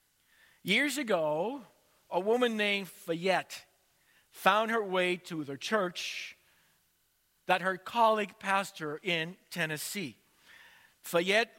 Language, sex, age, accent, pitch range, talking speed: English, male, 50-69, American, 160-215 Hz, 105 wpm